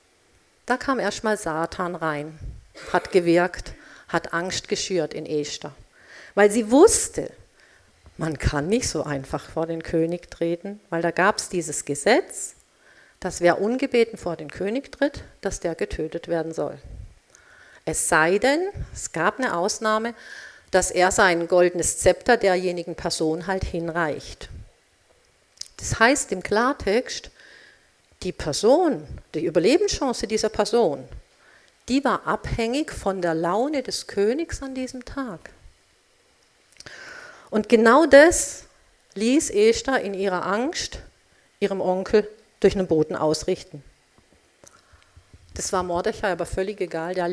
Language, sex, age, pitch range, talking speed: German, female, 50-69, 170-235 Hz, 125 wpm